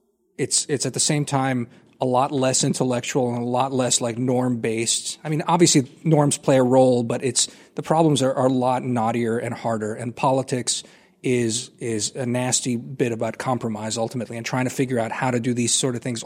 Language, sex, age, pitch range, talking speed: English, male, 40-59, 115-145 Hz, 205 wpm